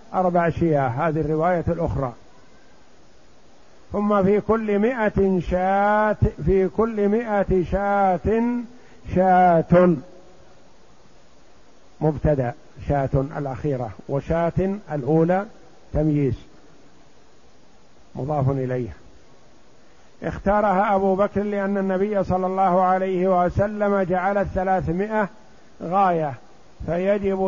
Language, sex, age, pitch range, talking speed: Arabic, male, 50-69, 160-190 Hz, 80 wpm